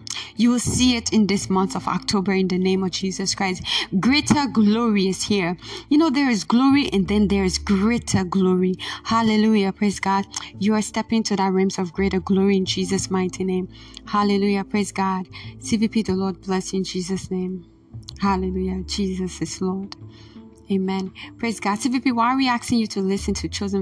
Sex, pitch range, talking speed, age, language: female, 190-225 Hz, 185 wpm, 20-39, English